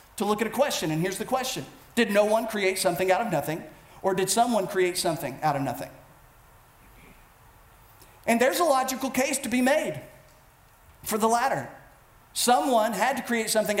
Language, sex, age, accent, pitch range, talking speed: English, male, 40-59, American, 195-260 Hz, 180 wpm